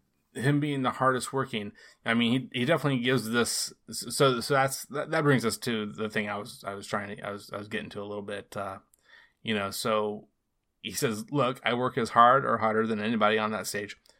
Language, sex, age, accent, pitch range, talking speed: English, male, 20-39, American, 105-120 Hz, 235 wpm